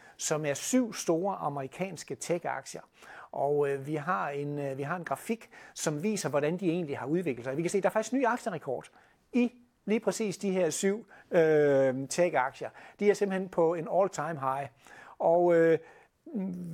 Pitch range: 150-200 Hz